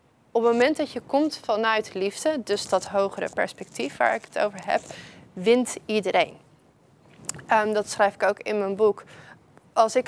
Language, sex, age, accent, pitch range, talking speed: Dutch, female, 20-39, Dutch, 200-235 Hz, 165 wpm